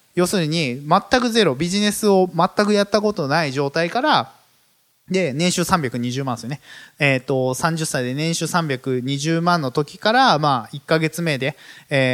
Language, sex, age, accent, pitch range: Japanese, male, 20-39, native, 125-185 Hz